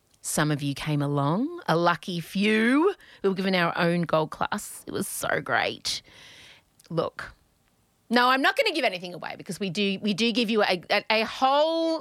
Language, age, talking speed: English, 30-49, 190 wpm